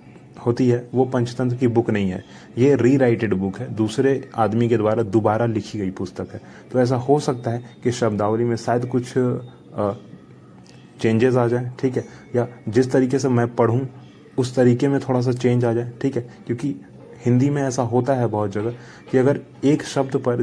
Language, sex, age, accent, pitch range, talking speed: Hindi, male, 30-49, native, 115-130 Hz, 205 wpm